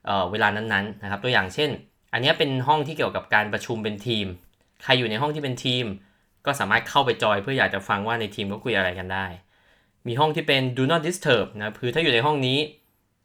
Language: Thai